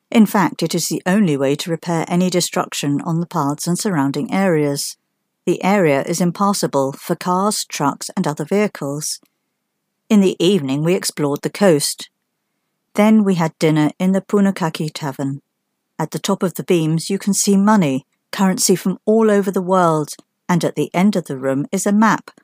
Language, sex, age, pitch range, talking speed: English, female, 50-69, 150-200 Hz, 180 wpm